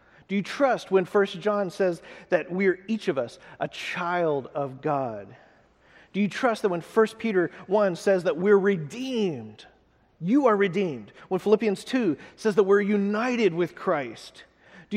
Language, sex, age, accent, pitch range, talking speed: English, male, 40-59, American, 160-205 Hz, 170 wpm